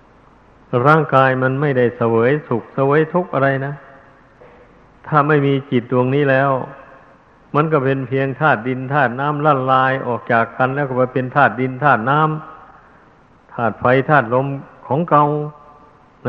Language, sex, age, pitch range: Thai, male, 60-79, 120-140 Hz